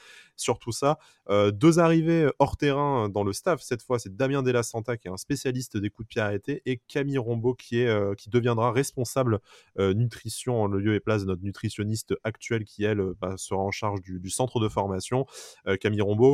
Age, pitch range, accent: 20-39, 100-125 Hz, French